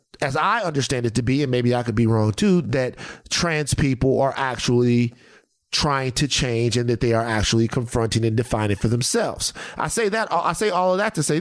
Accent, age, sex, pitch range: American, 30-49, male, 125-185 Hz